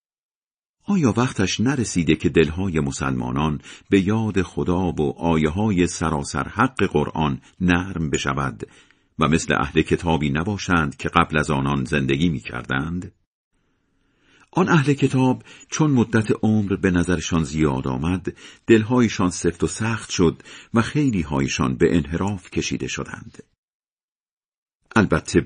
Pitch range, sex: 75-105 Hz, male